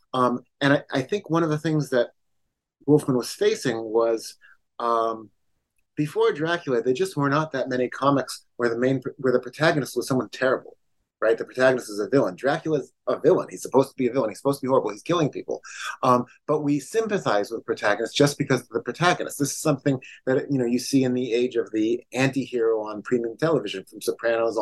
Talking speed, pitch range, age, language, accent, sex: 210 wpm, 120-145 Hz, 30-49, English, American, male